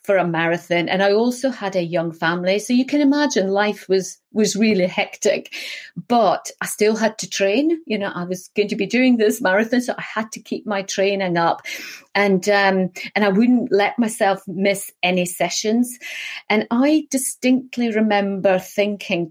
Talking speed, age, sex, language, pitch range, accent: 180 wpm, 40-59, female, English, 175-215 Hz, British